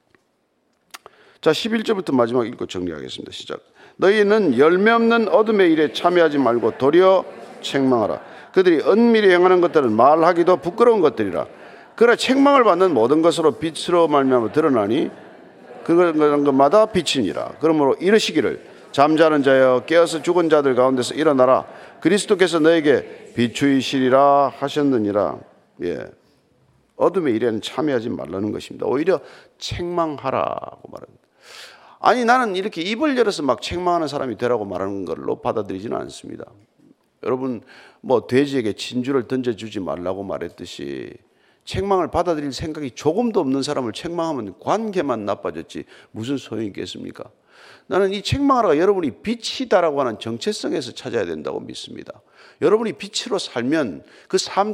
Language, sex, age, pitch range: Korean, male, 40-59, 135-210 Hz